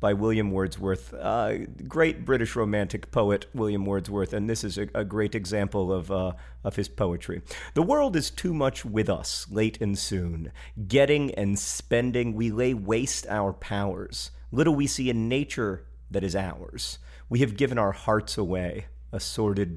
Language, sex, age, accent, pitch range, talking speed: English, male, 40-59, American, 95-115 Hz, 175 wpm